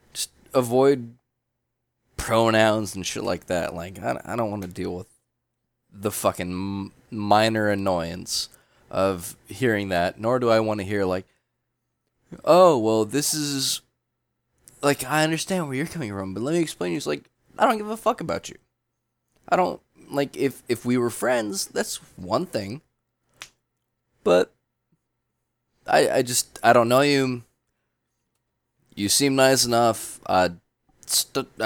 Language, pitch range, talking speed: English, 100-130 Hz, 145 wpm